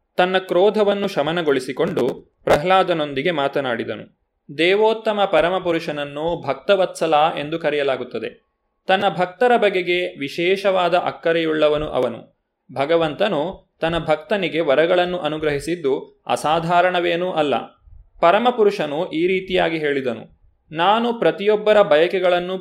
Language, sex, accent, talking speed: Kannada, male, native, 80 wpm